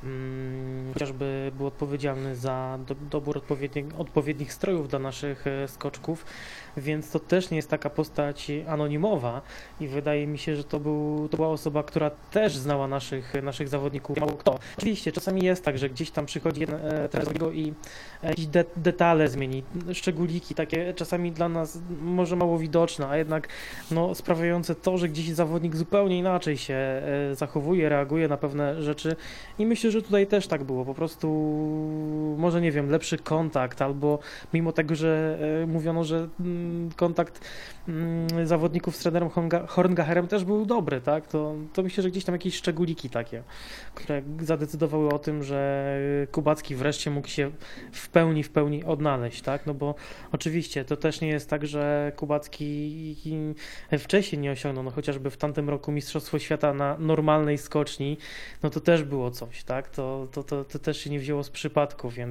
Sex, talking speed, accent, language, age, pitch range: male, 165 wpm, native, Polish, 20-39, 145-165 Hz